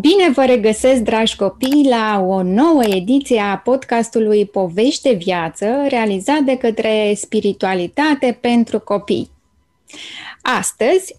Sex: female